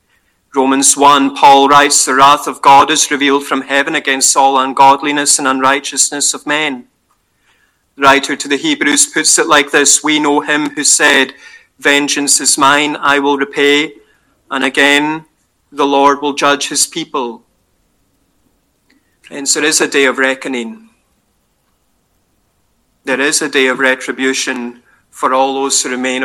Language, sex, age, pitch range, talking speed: English, male, 30-49, 130-145 Hz, 150 wpm